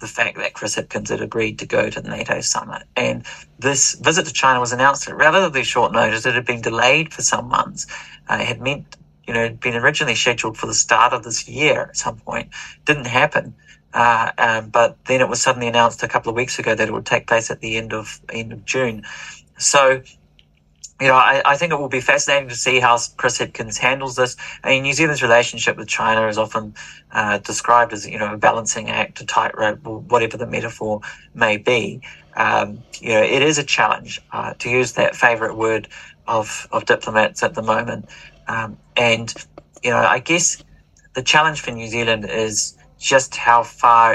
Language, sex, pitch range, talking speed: English, male, 110-130 Hz, 210 wpm